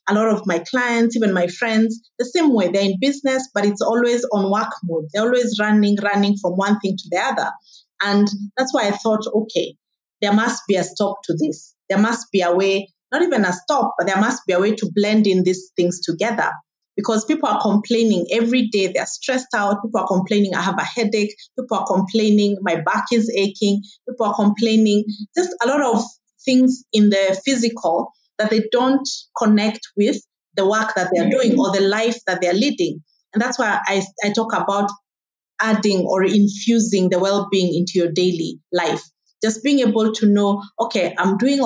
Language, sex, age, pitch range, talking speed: English, female, 30-49, 195-230 Hz, 200 wpm